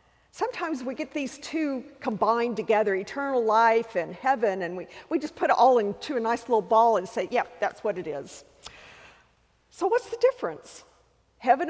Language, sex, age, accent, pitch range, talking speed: English, female, 50-69, American, 190-290 Hz, 180 wpm